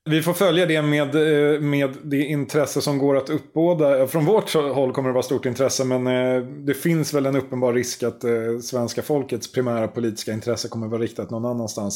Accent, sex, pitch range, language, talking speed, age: native, male, 110-150 Hz, Swedish, 195 wpm, 30-49